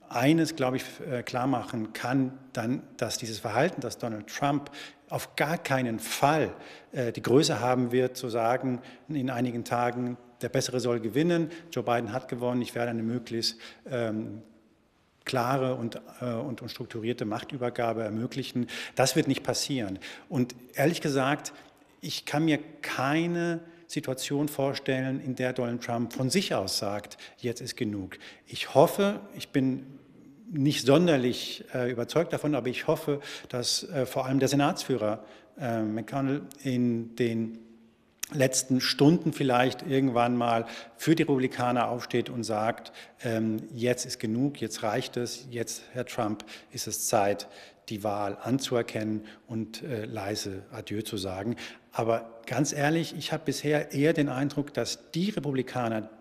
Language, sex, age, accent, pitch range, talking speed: German, male, 50-69, German, 115-140 Hz, 145 wpm